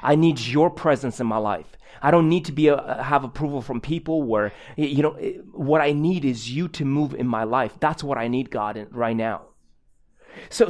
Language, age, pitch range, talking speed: English, 30-49, 115-165 Hz, 220 wpm